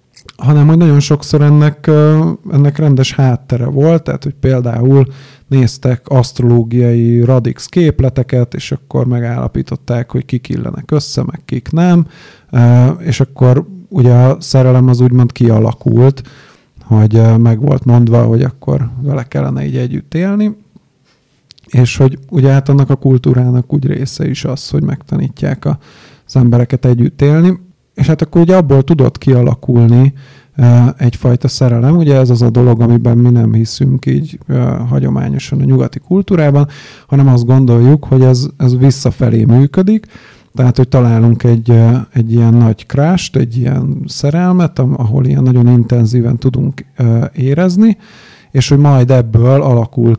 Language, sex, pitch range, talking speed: Hungarian, male, 120-140 Hz, 135 wpm